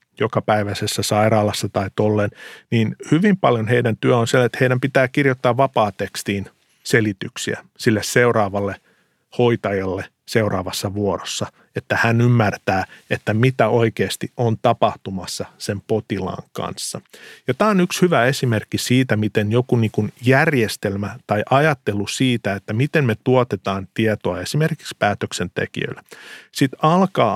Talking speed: 125 wpm